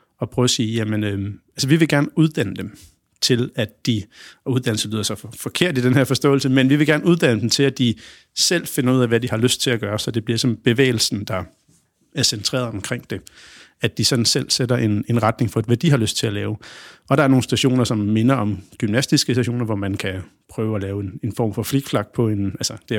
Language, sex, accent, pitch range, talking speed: Danish, male, native, 110-135 Hz, 240 wpm